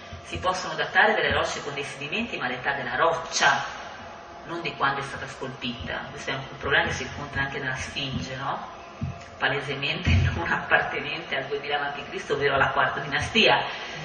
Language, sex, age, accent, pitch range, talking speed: Italian, female, 30-49, native, 135-200 Hz, 165 wpm